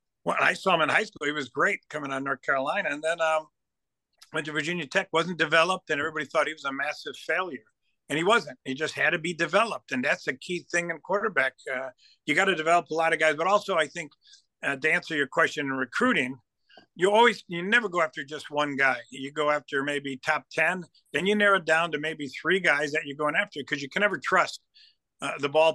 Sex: male